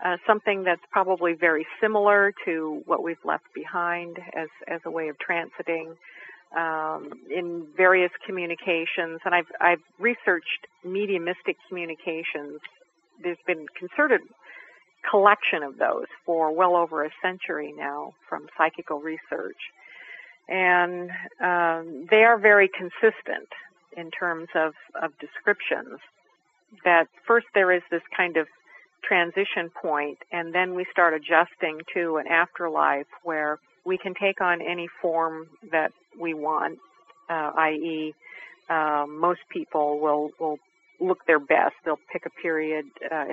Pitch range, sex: 160-180 Hz, female